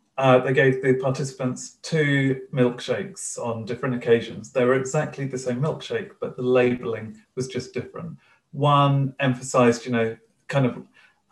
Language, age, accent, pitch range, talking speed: English, 40-59, British, 120-135 Hz, 155 wpm